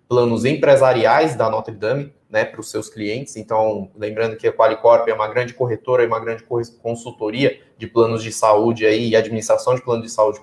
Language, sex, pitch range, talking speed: Portuguese, male, 110-130 Hz, 195 wpm